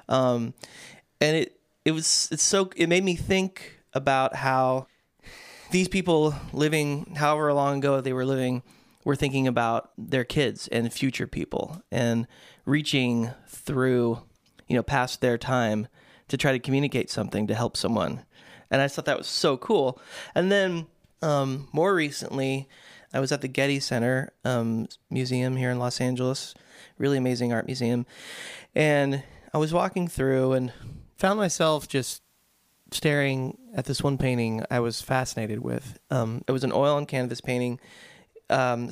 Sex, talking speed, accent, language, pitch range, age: male, 155 wpm, American, English, 125-145 Hz, 20-39